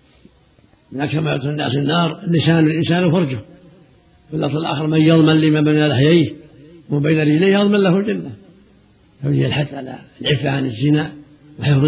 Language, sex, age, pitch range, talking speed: Arabic, male, 60-79, 145-165 Hz, 130 wpm